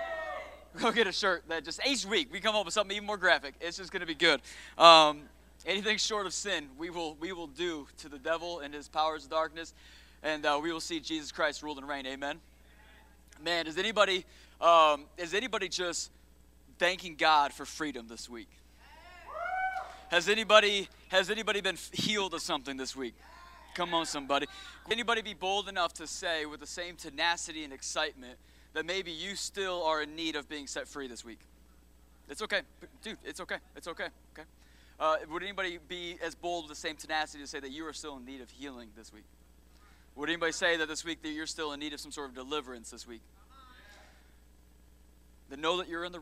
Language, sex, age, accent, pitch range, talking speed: English, male, 30-49, American, 130-175 Hz, 205 wpm